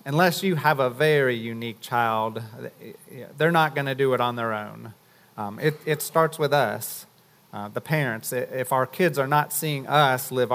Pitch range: 120-150 Hz